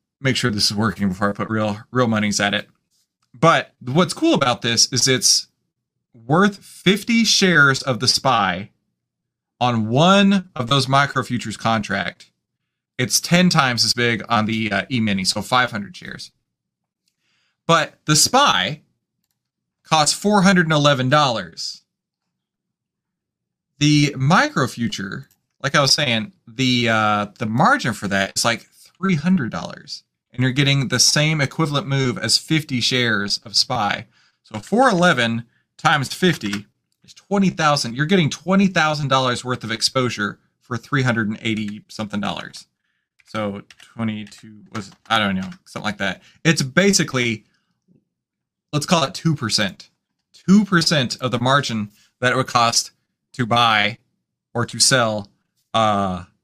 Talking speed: 130 wpm